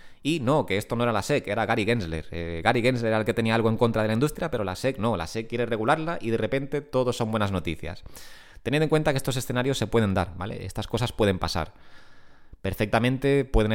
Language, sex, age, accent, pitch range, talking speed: Spanish, male, 20-39, Spanish, 100-130 Hz, 240 wpm